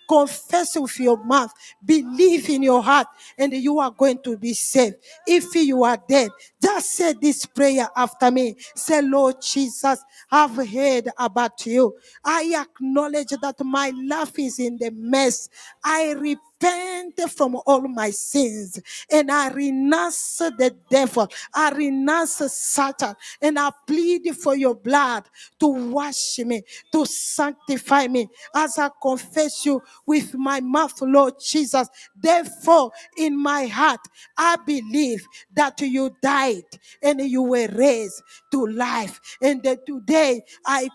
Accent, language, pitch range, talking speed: Nigerian, English, 230-290 Hz, 140 wpm